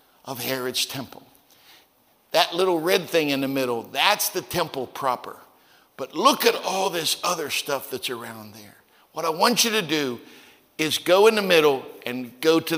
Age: 60-79